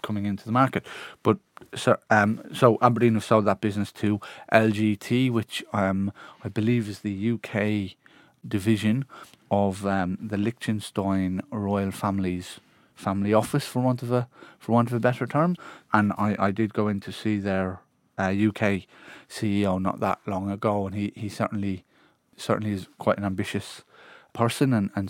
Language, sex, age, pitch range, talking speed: English, male, 30-49, 100-110 Hz, 165 wpm